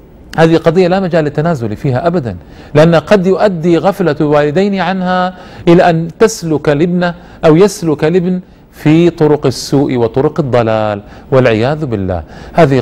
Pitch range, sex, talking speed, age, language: 115-170 Hz, male, 130 wpm, 40-59, Arabic